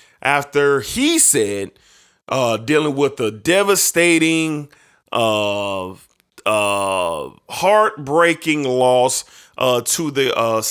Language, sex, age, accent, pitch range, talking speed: English, male, 20-39, American, 120-180 Hz, 90 wpm